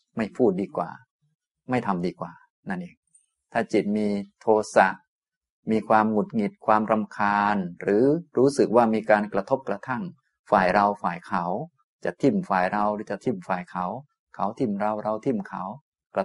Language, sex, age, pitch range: Thai, male, 20-39, 100-130 Hz